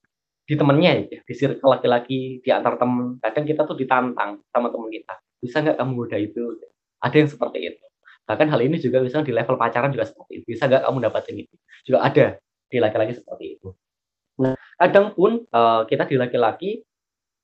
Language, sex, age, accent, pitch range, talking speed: Indonesian, male, 10-29, native, 110-145 Hz, 180 wpm